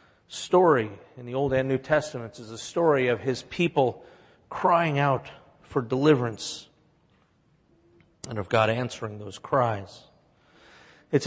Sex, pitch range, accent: male, 120-150 Hz, American